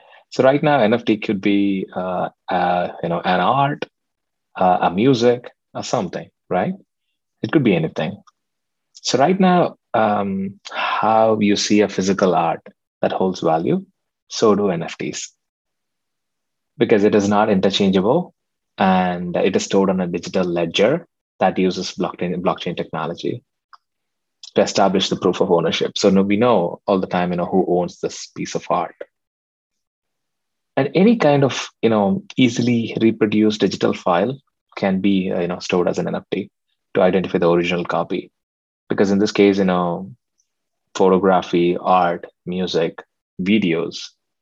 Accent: Indian